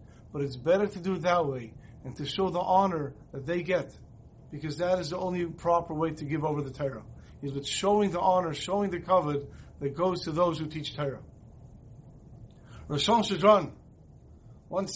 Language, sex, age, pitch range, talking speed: English, male, 50-69, 155-215 Hz, 180 wpm